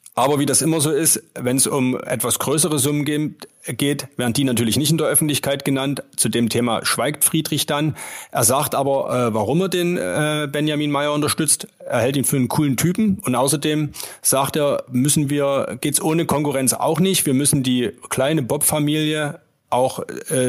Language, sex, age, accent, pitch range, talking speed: German, male, 30-49, German, 125-155 Hz, 175 wpm